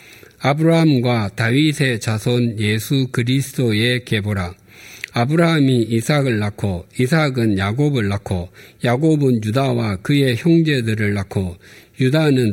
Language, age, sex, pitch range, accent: Korean, 50-69, male, 105-150 Hz, native